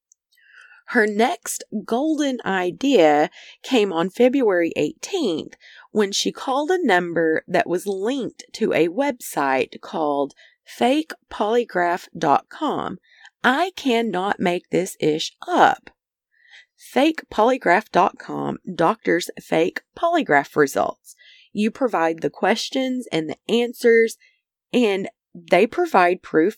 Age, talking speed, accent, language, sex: 30-49, 95 wpm, American, English, female